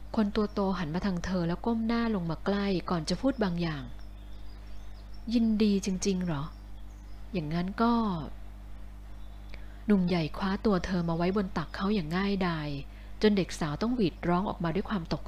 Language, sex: Thai, female